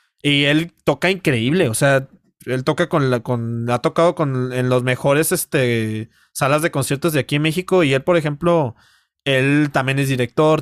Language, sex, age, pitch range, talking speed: Spanish, male, 30-49, 135-170 Hz, 185 wpm